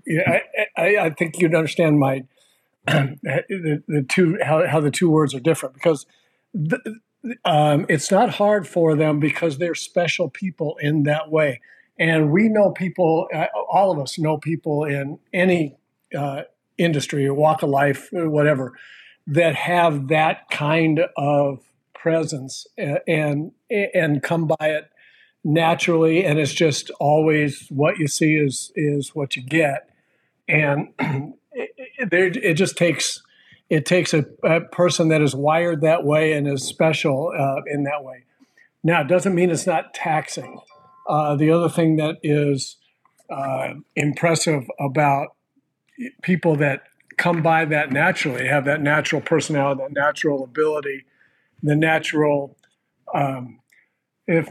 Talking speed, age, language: 150 wpm, 50-69, English